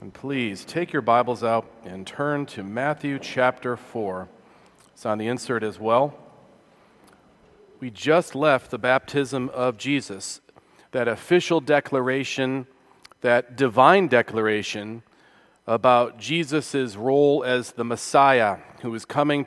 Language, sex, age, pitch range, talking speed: English, male, 40-59, 125-155 Hz, 125 wpm